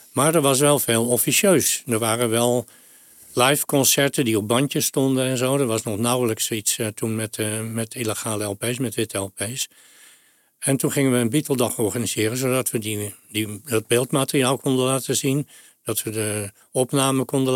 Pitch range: 115-135 Hz